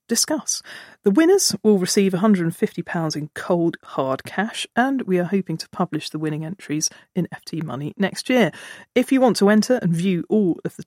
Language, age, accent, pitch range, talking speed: English, 40-59, British, 170-220 Hz, 195 wpm